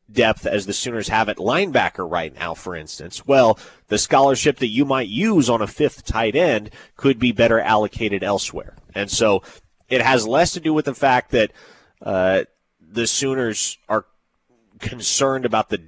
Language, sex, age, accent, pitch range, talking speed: English, male, 30-49, American, 105-130 Hz, 175 wpm